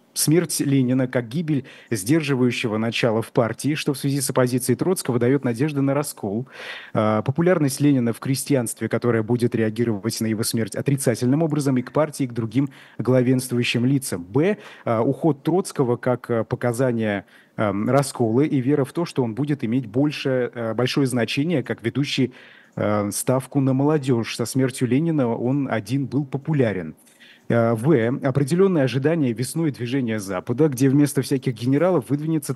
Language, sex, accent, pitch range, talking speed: Russian, male, native, 120-145 Hz, 145 wpm